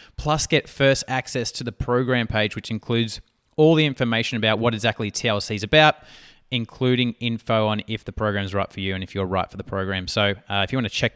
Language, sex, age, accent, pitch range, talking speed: English, male, 20-39, Australian, 100-130 Hz, 230 wpm